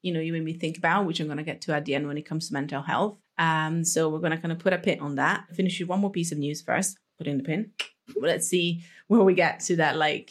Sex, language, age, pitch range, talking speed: female, English, 30-49, 165-200 Hz, 320 wpm